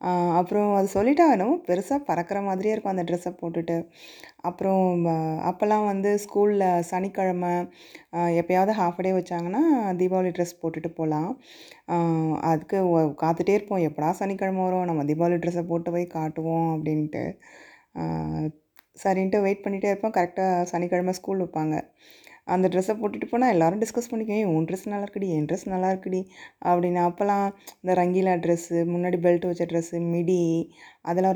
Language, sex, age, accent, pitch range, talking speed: Tamil, female, 20-39, native, 170-190 Hz, 135 wpm